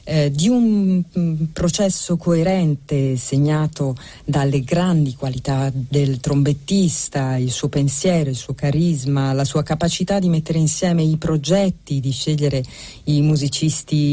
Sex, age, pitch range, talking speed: female, 40-59, 140-165 Hz, 120 wpm